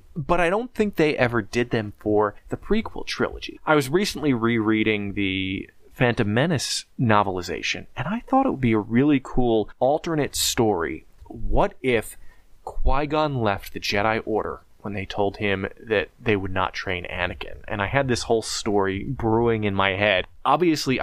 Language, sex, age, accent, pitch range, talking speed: English, male, 30-49, American, 100-120 Hz, 170 wpm